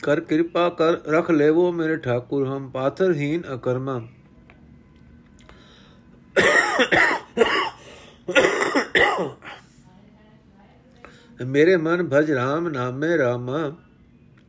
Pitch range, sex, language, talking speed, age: 135-175 Hz, male, Punjabi, 70 wpm, 50-69